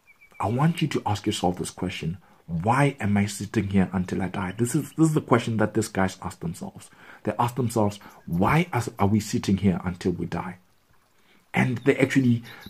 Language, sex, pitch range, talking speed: English, male, 95-120 Hz, 195 wpm